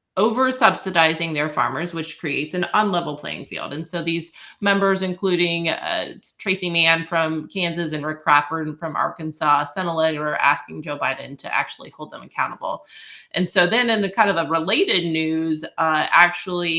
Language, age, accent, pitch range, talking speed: English, 20-39, American, 155-180 Hz, 170 wpm